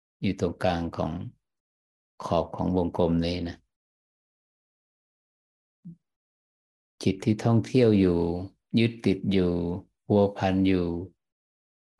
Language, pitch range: Thai, 85-110 Hz